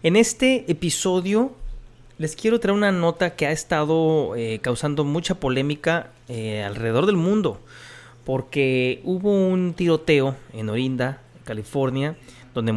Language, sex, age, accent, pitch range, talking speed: Spanish, male, 30-49, Mexican, 120-160 Hz, 125 wpm